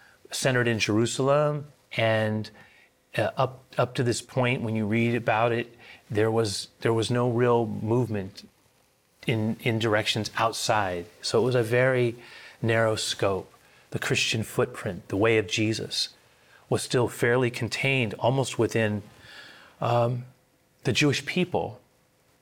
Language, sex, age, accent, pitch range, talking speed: English, male, 30-49, American, 110-130 Hz, 135 wpm